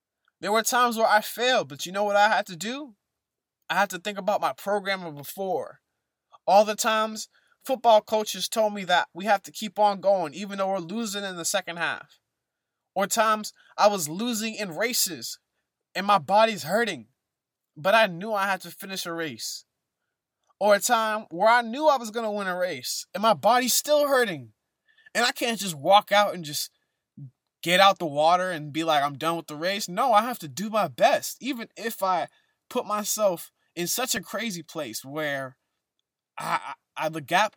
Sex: male